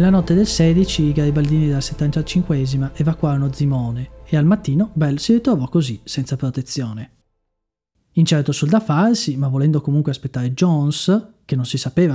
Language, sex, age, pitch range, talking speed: Italian, male, 30-49, 130-155 Hz, 160 wpm